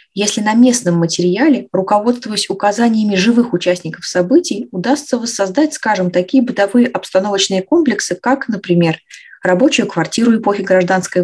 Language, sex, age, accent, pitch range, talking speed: Russian, female, 20-39, native, 180-240 Hz, 115 wpm